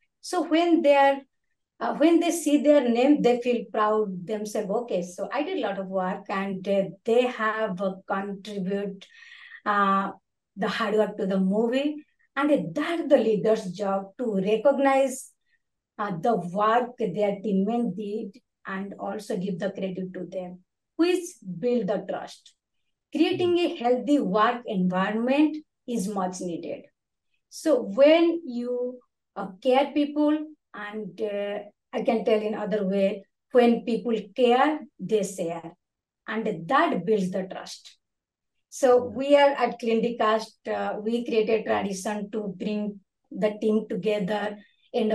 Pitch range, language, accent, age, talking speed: 200-245 Hz, English, Indian, 50-69, 140 wpm